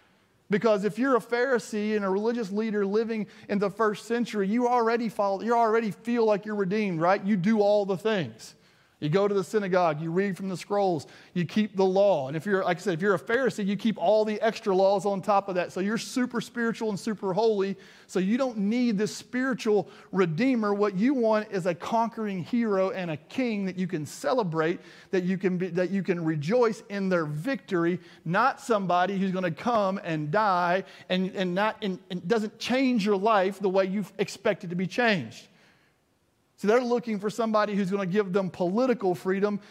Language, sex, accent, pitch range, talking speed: English, male, American, 180-220 Hz, 210 wpm